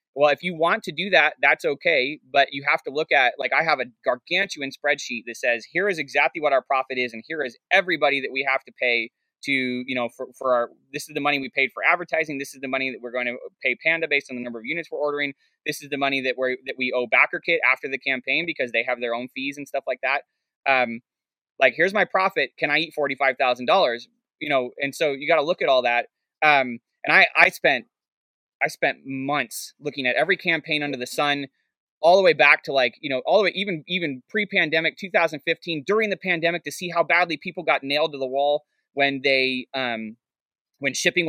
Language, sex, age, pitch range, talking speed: English, male, 20-39, 130-165 Hz, 240 wpm